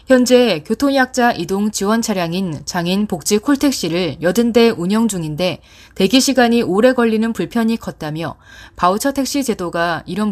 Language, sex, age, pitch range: Korean, female, 20-39, 170-230 Hz